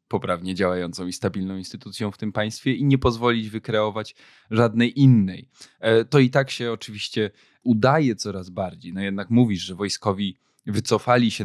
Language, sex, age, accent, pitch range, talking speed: Polish, male, 20-39, native, 105-130 Hz, 150 wpm